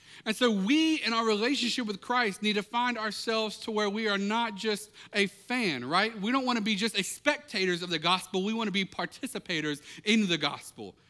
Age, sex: 40-59, male